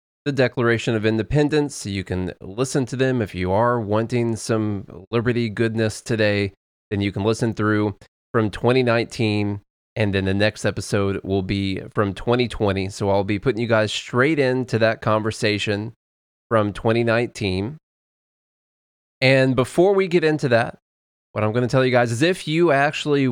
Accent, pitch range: American, 100-125 Hz